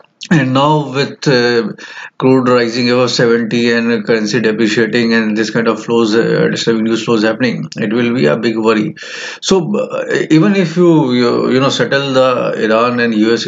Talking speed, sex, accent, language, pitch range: 180 wpm, male, Indian, English, 115-140 Hz